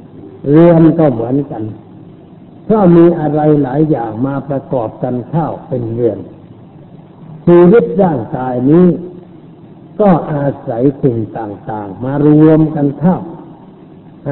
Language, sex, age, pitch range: Thai, male, 60-79, 135-170 Hz